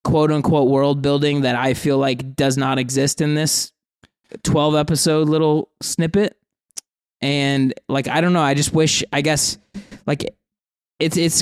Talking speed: 160 wpm